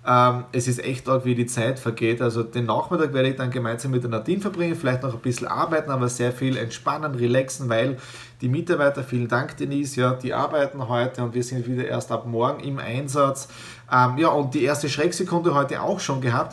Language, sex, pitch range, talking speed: German, male, 125-165 Hz, 205 wpm